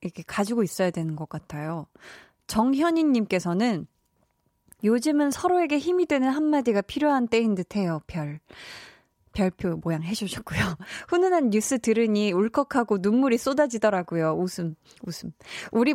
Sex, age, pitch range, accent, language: female, 20-39, 185-265 Hz, native, Korean